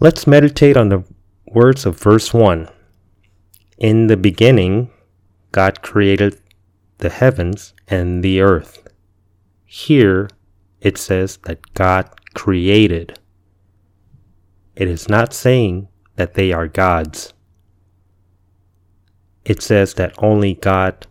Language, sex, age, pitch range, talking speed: English, male, 30-49, 90-105 Hz, 105 wpm